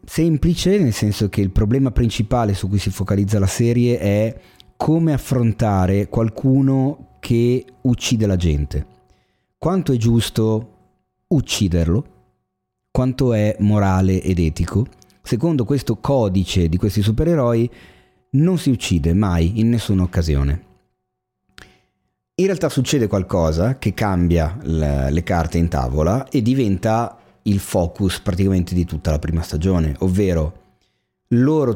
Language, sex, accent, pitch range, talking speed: Italian, male, native, 90-120 Hz, 125 wpm